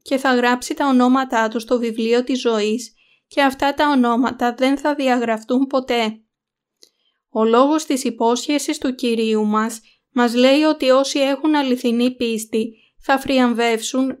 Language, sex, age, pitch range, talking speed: Greek, female, 20-39, 230-270 Hz, 145 wpm